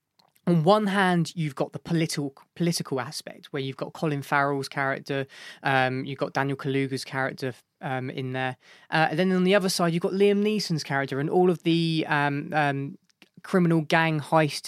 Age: 20-39